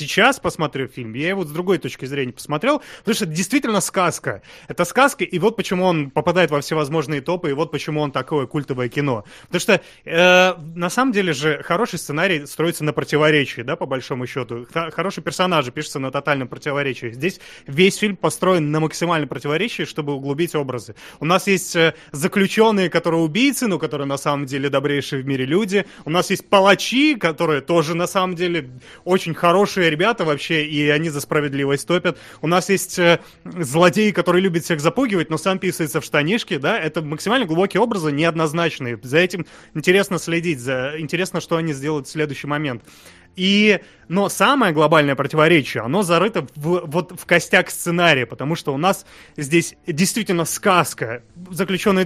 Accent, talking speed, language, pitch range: native, 170 wpm, Russian, 150-185 Hz